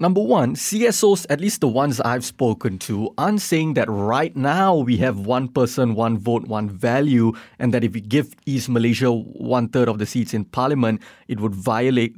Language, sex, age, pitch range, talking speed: English, male, 20-39, 120-160 Hz, 190 wpm